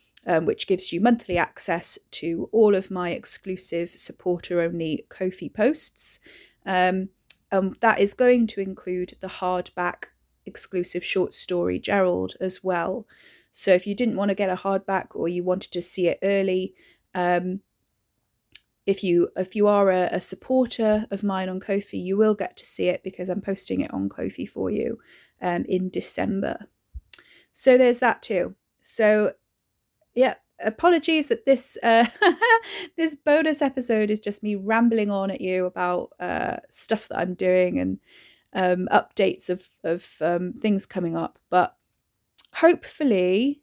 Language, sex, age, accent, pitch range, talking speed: English, female, 30-49, British, 185-235 Hz, 155 wpm